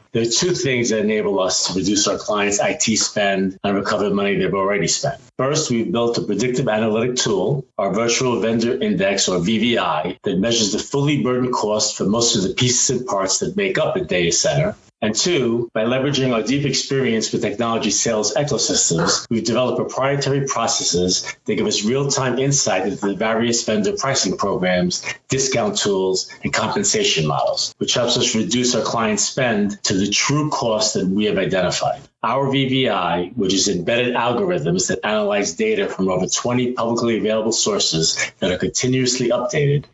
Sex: male